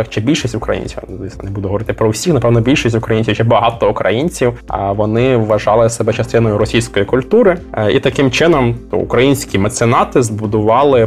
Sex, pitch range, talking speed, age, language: male, 105-125 Hz, 140 wpm, 20-39, Ukrainian